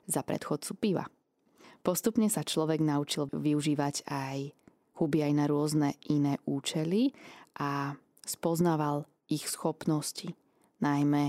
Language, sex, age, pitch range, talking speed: Slovak, female, 20-39, 140-170 Hz, 105 wpm